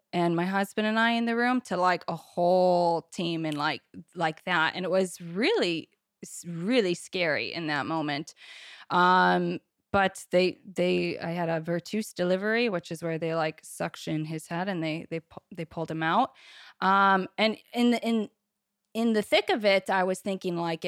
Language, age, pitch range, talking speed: English, 20-39, 165-200 Hz, 185 wpm